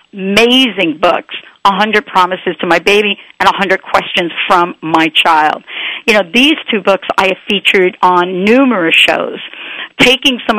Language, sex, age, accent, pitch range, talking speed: English, female, 50-69, American, 180-220 Hz, 160 wpm